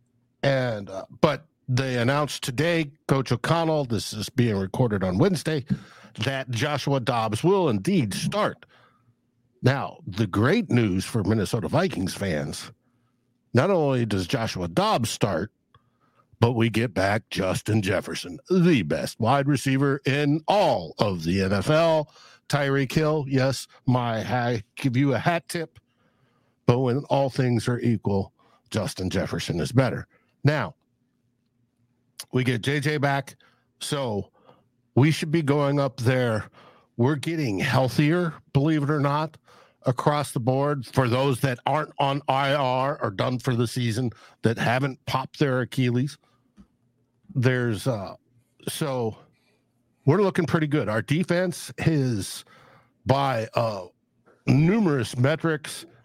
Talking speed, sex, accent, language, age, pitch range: 130 wpm, male, American, English, 60-79, 120-145 Hz